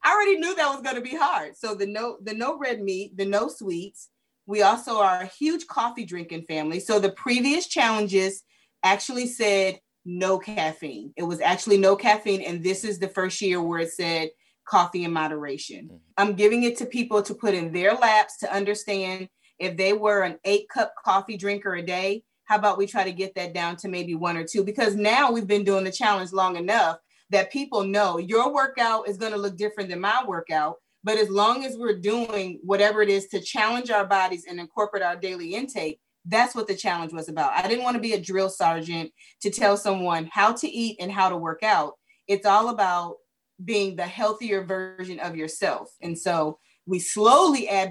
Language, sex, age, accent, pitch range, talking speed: English, female, 30-49, American, 180-220 Hz, 210 wpm